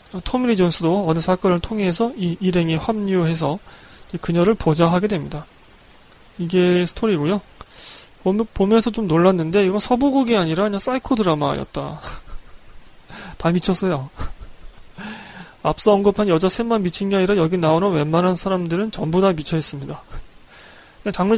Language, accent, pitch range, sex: Korean, native, 165-210 Hz, male